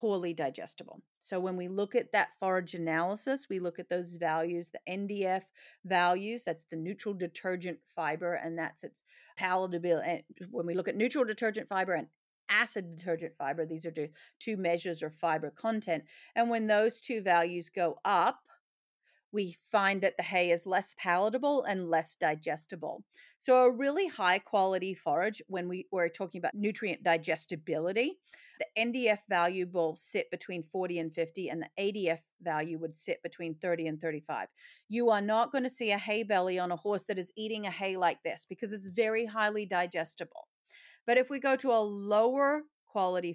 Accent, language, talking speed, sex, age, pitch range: American, English, 175 wpm, female, 40-59, 170-215 Hz